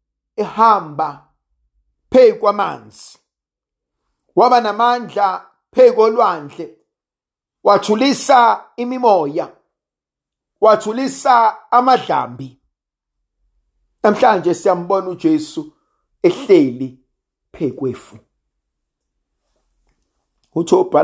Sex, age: male, 50-69